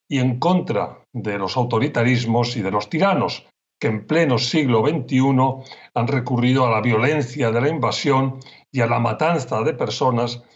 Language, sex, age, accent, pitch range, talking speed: Spanish, male, 40-59, Spanish, 115-140 Hz, 165 wpm